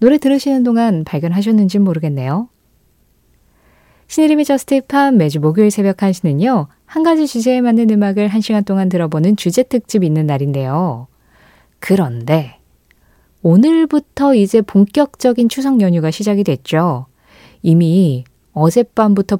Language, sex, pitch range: Korean, female, 160-255 Hz